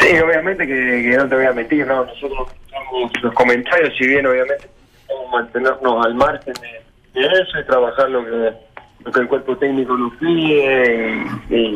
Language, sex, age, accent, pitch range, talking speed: Spanish, male, 20-39, Argentinian, 130-160 Hz, 185 wpm